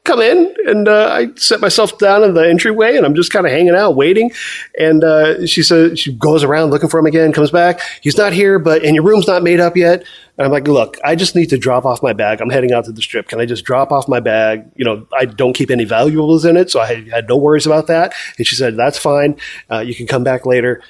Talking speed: 275 wpm